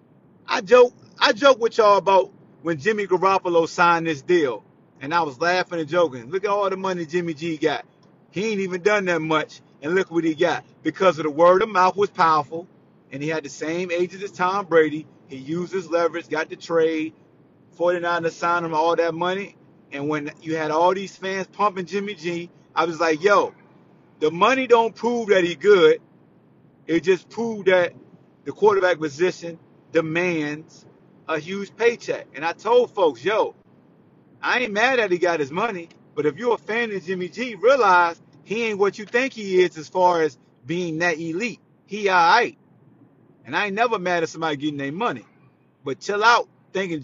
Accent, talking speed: American, 195 wpm